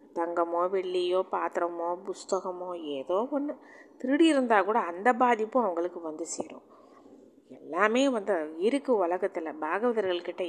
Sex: female